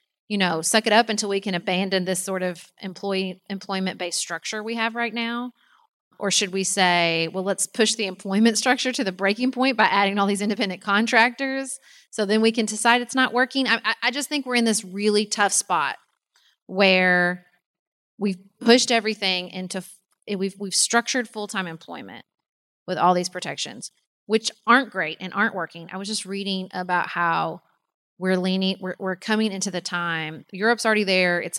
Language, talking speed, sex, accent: English, 185 wpm, female, American